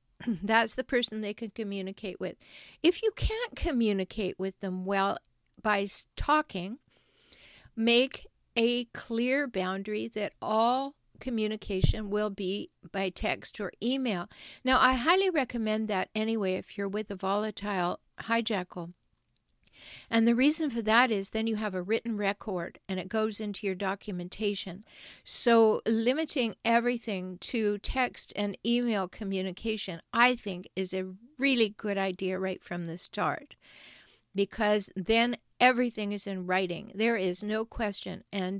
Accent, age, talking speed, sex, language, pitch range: American, 50-69, 140 wpm, female, English, 195-235 Hz